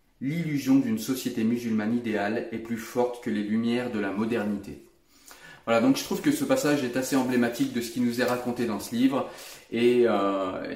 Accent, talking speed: French, 195 wpm